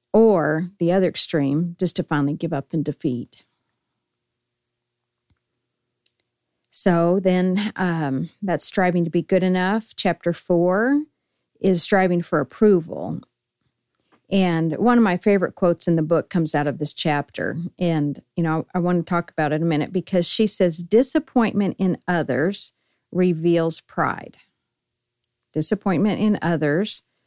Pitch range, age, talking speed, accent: 155-195 Hz, 50-69, 140 wpm, American